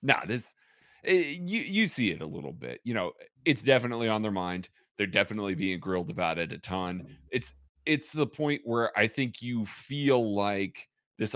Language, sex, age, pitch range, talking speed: English, male, 30-49, 105-160 Hz, 185 wpm